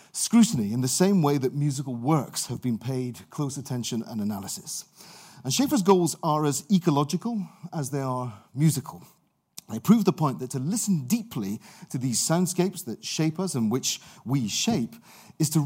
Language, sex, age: English, male, 40-59